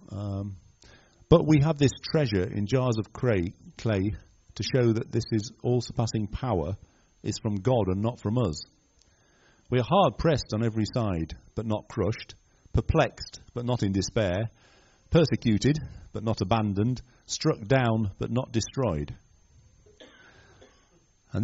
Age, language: 50-69, English